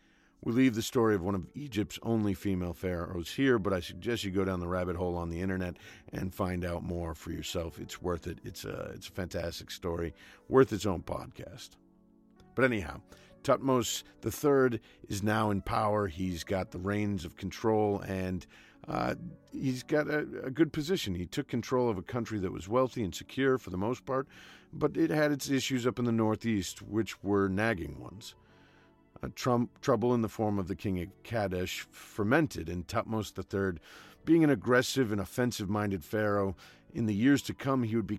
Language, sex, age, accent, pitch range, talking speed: English, male, 50-69, American, 95-120 Hz, 190 wpm